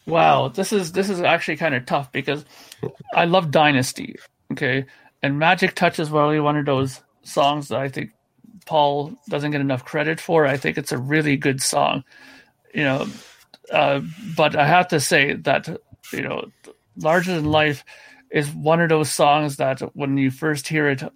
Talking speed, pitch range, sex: 180 wpm, 140-160 Hz, male